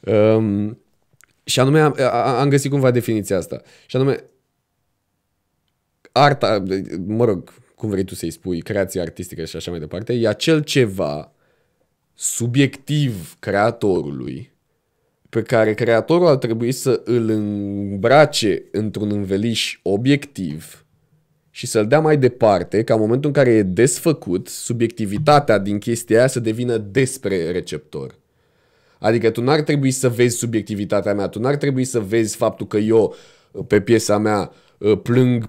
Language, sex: Romanian, male